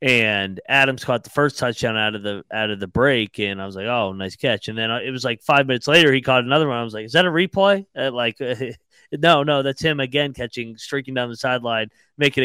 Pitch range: 115-155 Hz